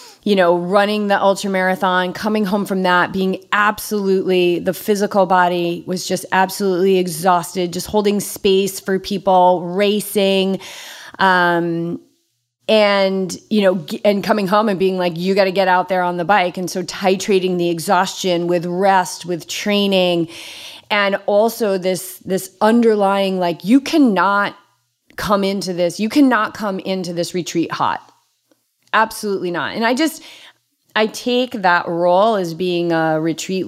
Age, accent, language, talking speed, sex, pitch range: 30-49, American, English, 150 wpm, female, 175-210 Hz